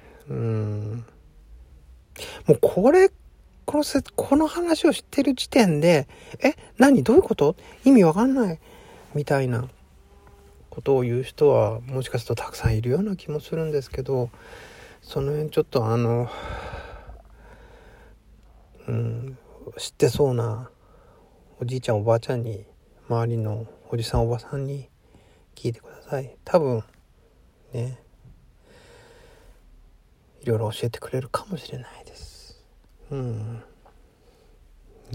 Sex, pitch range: male, 115-155 Hz